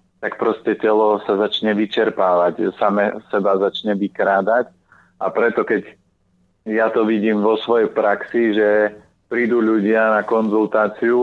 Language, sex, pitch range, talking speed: Slovak, male, 100-110 Hz, 130 wpm